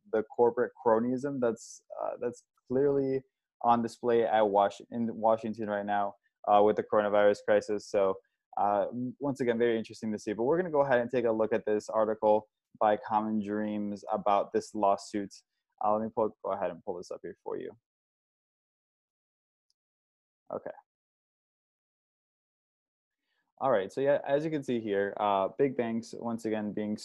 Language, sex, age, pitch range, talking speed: English, male, 20-39, 105-120 Hz, 170 wpm